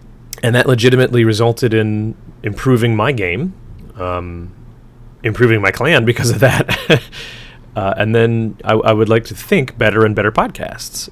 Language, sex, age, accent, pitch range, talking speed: English, male, 30-49, American, 100-120 Hz, 155 wpm